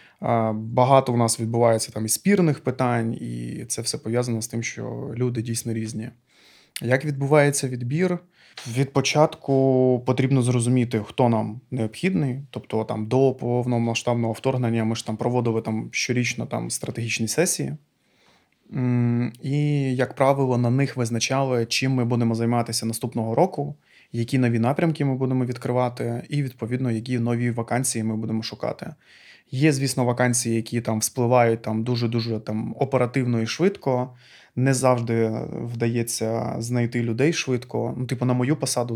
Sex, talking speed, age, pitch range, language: male, 135 wpm, 20-39, 115-130 Hz, Ukrainian